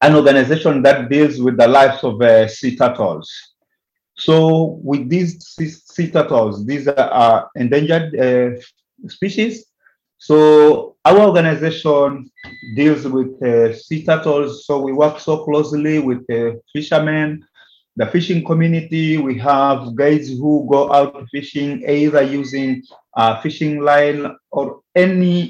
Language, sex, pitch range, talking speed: English, male, 130-160 Hz, 125 wpm